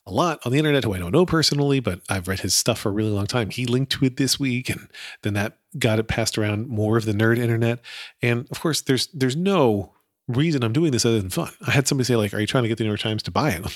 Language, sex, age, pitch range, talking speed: English, male, 40-59, 105-145 Hz, 295 wpm